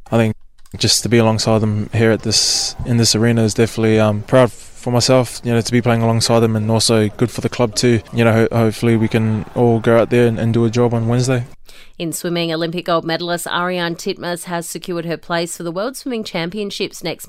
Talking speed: 235 wpm